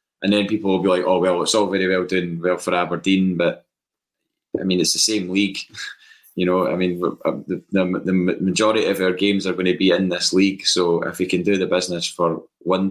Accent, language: British, English